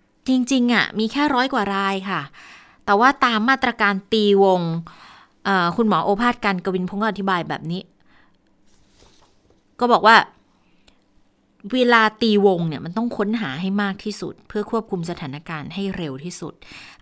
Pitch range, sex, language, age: 175-225 Hz, female, Thai, 20-39